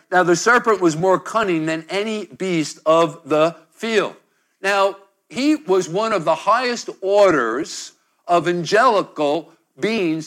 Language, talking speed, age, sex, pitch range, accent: English, 135 wpm, 60-79, male, 140-185 Hz, American